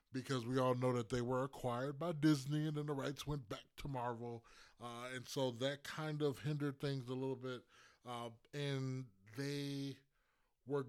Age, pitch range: 20-39, 115-145 Hz